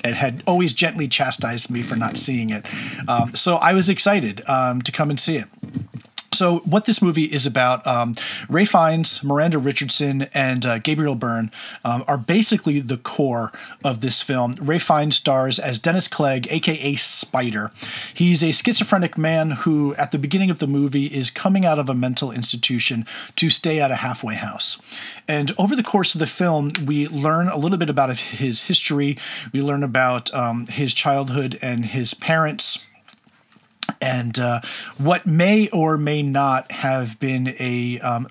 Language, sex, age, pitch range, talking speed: English, male, 40-59, 125-165 Hz, 170 wpm